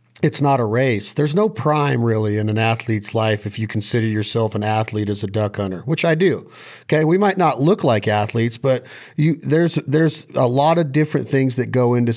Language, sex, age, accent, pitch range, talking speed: English, male, 40-59, American, 115-150 Hz, 215 wpm